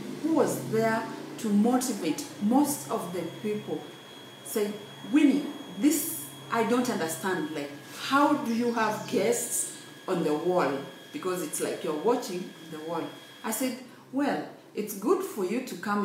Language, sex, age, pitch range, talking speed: English, female, 40-59, 170-250 Hz, 150 wpm